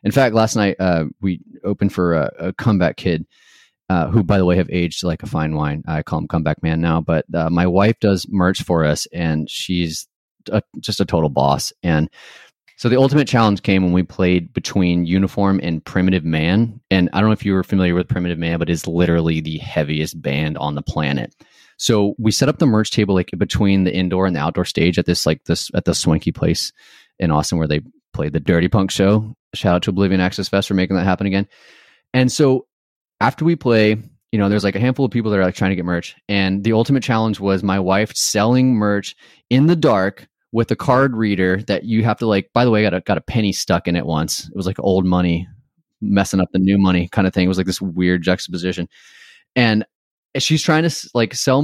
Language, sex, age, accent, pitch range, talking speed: English, male, 30-49, American, 85-110 Hz, 230 wpm